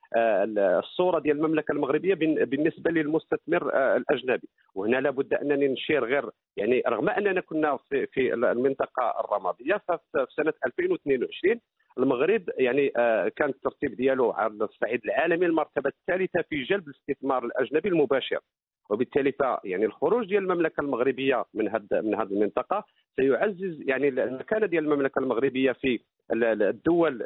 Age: 50-69